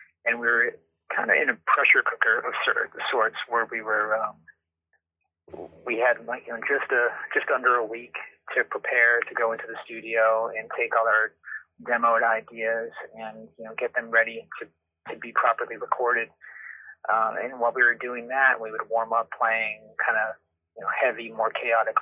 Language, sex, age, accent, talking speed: English, male, 30-49, American, 190 wpm